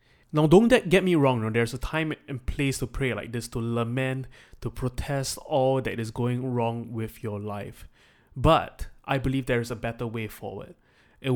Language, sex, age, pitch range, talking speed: English, male, 20-39, 115-130 Hz, 190 wpm